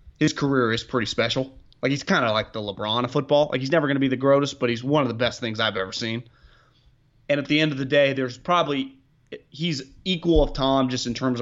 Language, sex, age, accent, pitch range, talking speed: English, male, 30-49, American, 115-140 Hz, 260 wpm